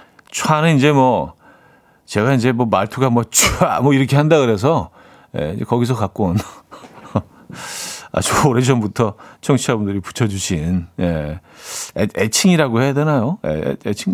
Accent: native